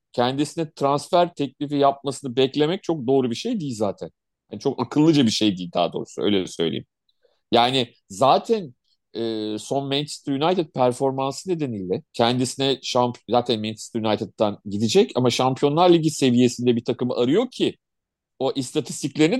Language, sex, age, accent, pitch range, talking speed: Turkish, male, 40-59, native, 120-160 Hz, 140 wpm